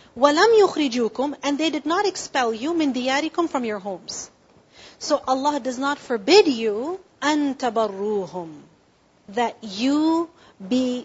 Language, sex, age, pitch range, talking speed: English, female, 40-59, 225-285 Hz, 120 wpm